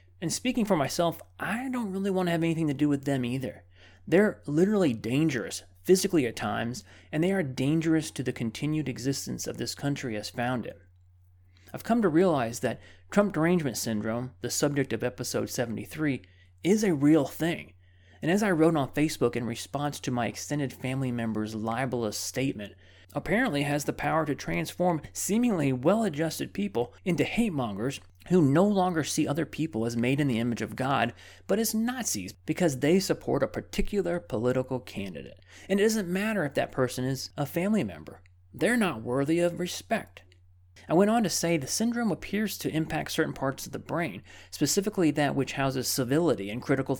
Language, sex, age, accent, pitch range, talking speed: English, male, 30-49, American, 115-170 Hz, 180 wpm